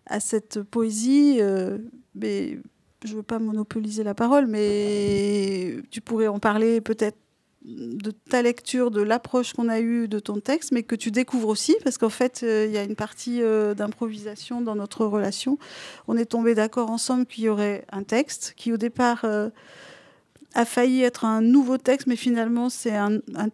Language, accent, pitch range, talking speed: French, French, 210-245 Hz, 185 wpm